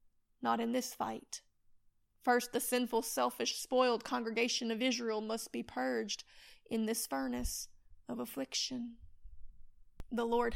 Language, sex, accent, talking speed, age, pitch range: English, female, American, 125 wpm, 30-49, 225-270 Hz